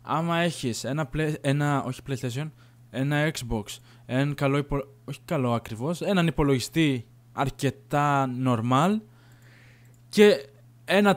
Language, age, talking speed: Greek, 20-39, 60 wpm